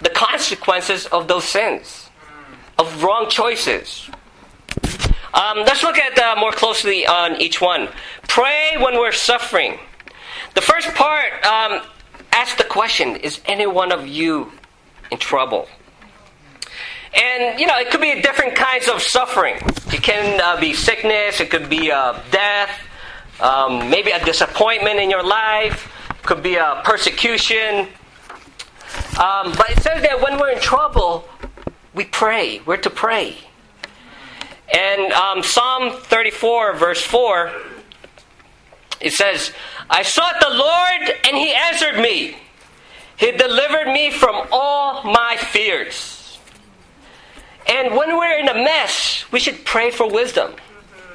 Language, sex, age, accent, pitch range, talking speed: English, male, 40-59, American, 200-290 Hz, 135 wpm